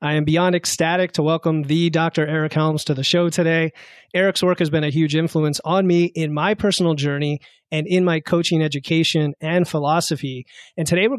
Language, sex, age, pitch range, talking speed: English, male, 30-49, 155-175 Hz, 200 wpm